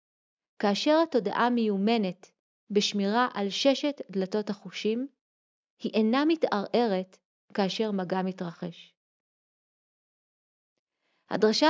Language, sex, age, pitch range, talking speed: Hebrew, female, 30-49, 200-260 Hz, 75 wpm